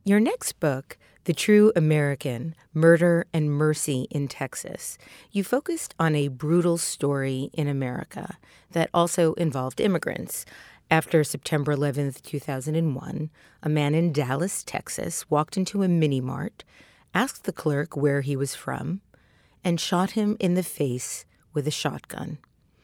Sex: female